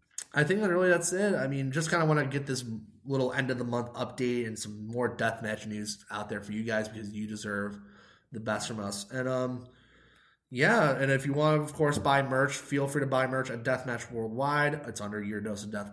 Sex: male